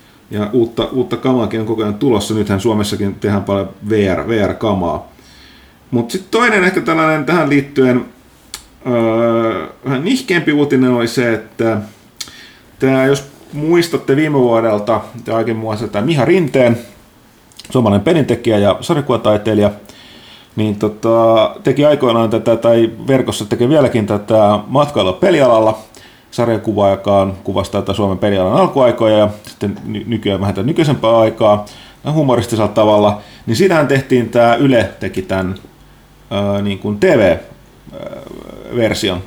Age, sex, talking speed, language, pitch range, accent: 30-49, male, 125 wpm, Finnish, 105-135 Hz, native